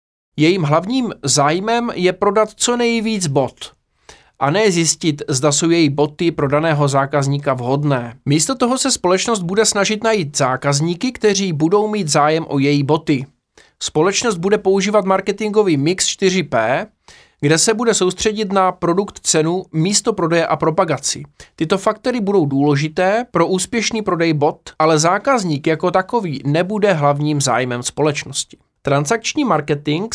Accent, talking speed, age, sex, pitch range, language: native, 135 wpm, 20-39, male, 145-205 Hz, Czech